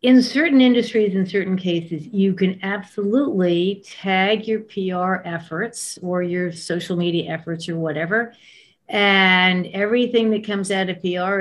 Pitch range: 170-210 Hz